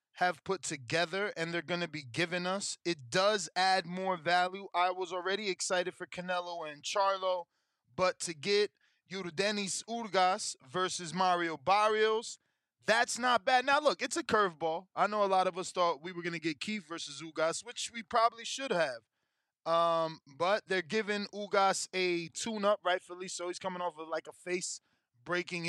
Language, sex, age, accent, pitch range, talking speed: English, male, 20-39, American, 170-205 Hz, 175 wpm